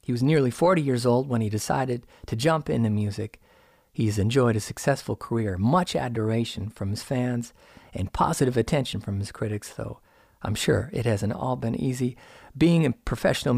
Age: 50-69